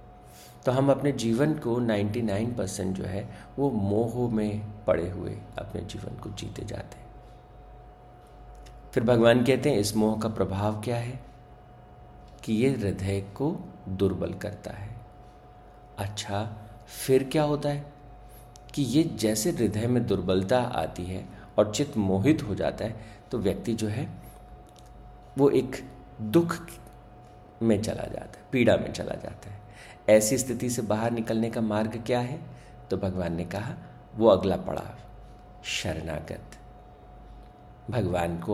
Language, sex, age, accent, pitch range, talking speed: Hindi, male, 50-69, native, 100-120 Hz, 140 wpm